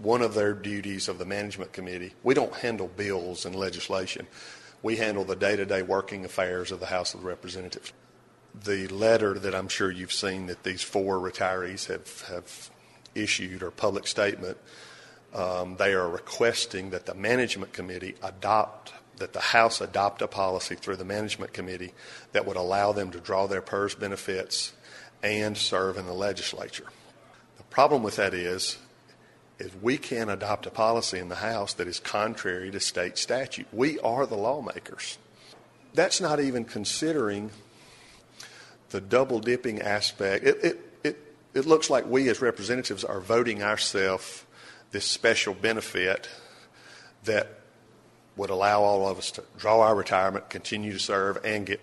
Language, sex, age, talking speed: English, male, 50-69, 155 wpm